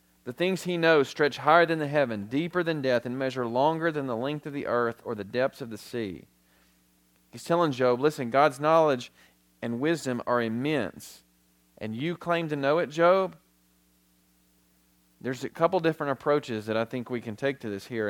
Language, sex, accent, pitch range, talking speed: English, male, American, 105-155 Hz, 190 wpm